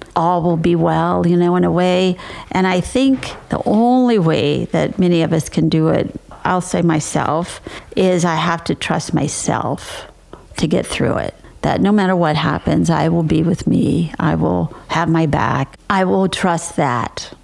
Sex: female